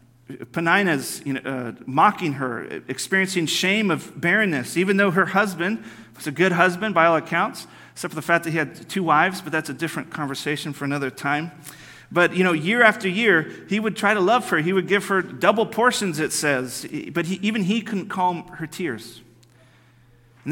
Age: 40-59